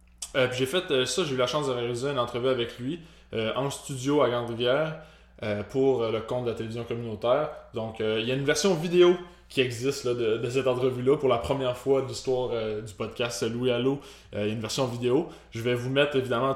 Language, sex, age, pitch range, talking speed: French, male, 20-39, 110-130 Hz, 245 wpm